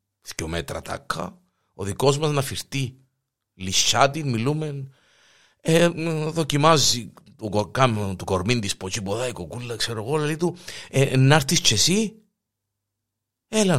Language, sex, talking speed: Greek, male, 110 wpm